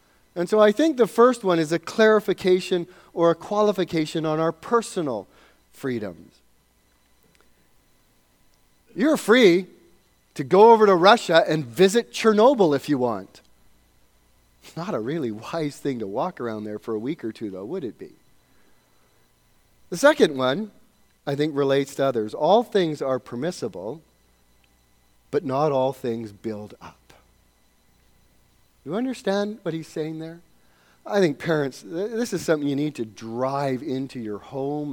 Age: 40-59